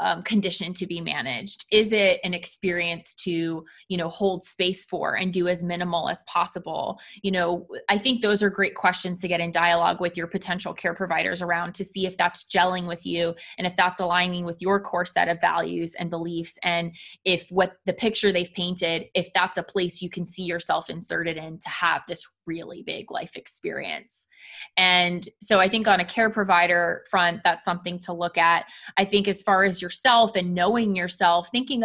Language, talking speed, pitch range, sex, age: English, 200 wpm, 175-210 Hz, female, 20-39